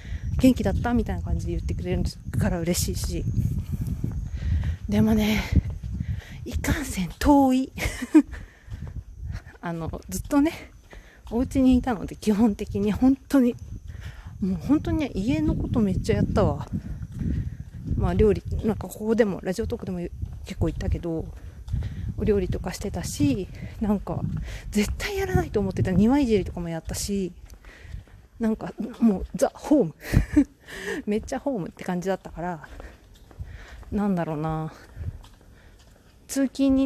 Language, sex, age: Japanese, female, 40-59